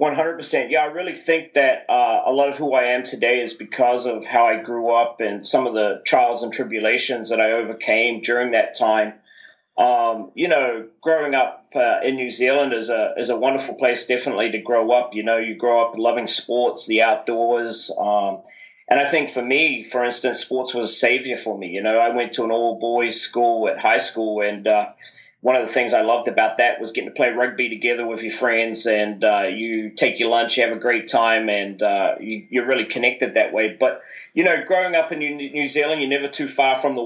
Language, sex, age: English, male, 30-49